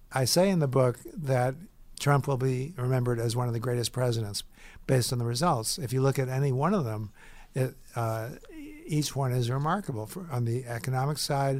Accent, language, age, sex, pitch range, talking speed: American, English, 60-79, male, 120-135 Hz, 190 wpm